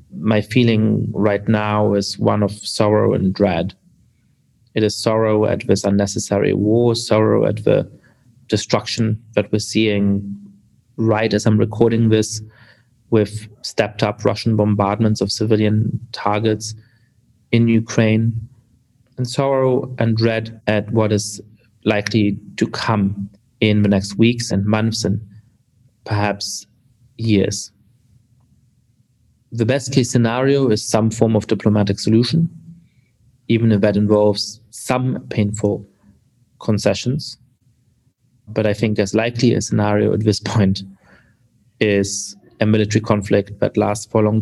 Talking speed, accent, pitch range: 125 wpm, German, 105-120 Hz